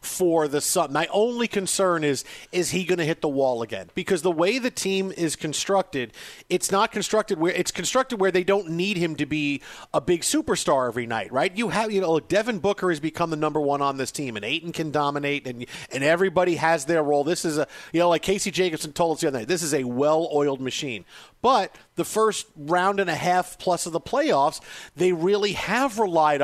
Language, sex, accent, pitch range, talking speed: English, male, American, 155-200 Hz, 220 wpm